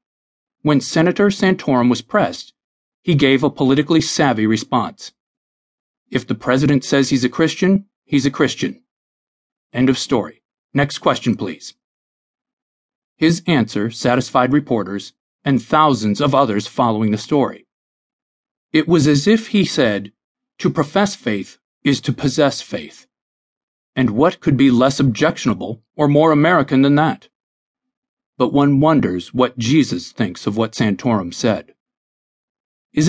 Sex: male